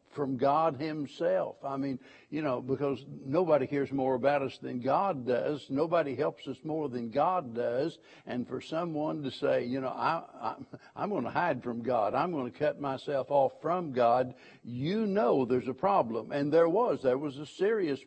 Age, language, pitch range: 60-79, English, 135-160 Hz